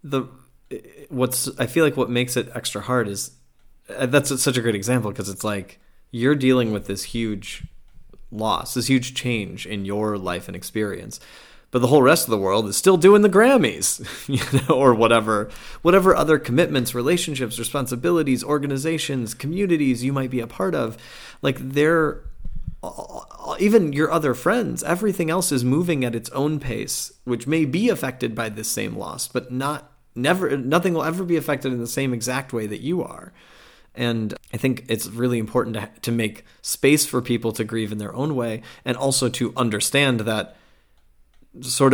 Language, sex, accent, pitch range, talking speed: English, male, American, 110-140 Hz, 175 wpm